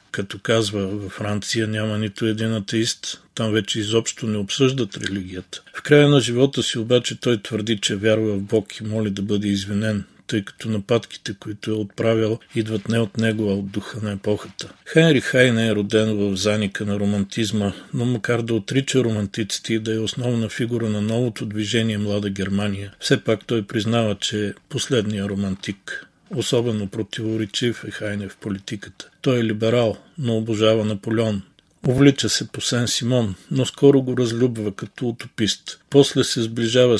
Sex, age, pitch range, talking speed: male, 40-59, 105-120 Hz, 165 wpm